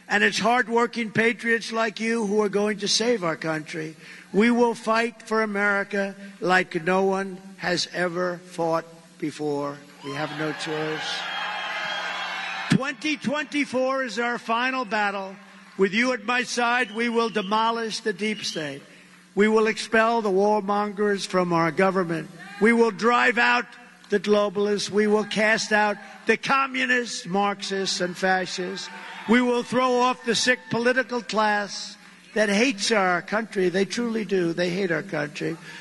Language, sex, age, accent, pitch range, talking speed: English, male, 50-69, American, 185-235 Hz, 145 wpm